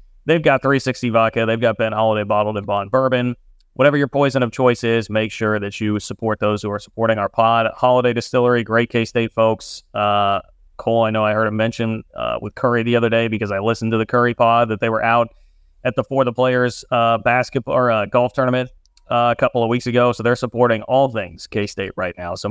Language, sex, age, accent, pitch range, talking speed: English, male, 30-49, American, 110-130 Hz, 225 wpm